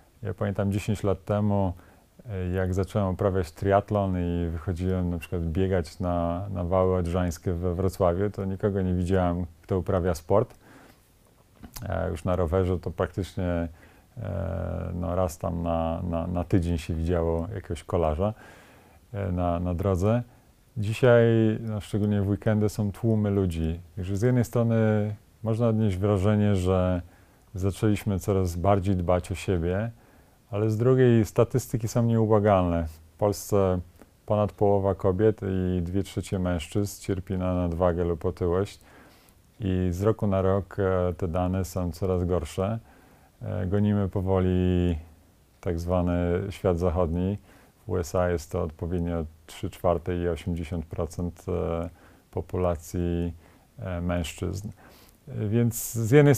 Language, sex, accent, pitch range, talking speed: Polish, male, native, 90-105 Hz, 125 wpm